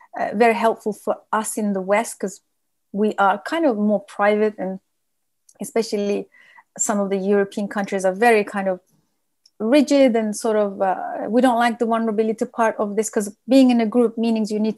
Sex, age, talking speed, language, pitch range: female, 30-49, 190 wpm, English, 200-240 Hz